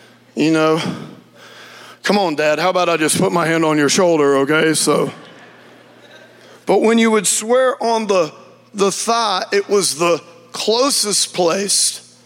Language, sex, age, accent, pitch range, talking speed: English, male, 50-69, American, 180-230 Hz, 150 wpm